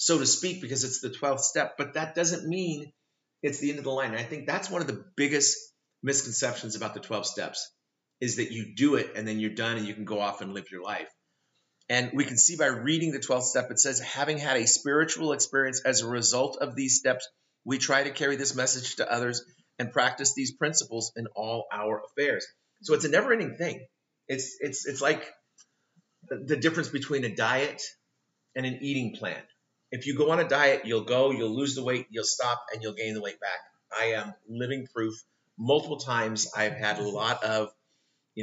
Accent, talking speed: American, 215 wpm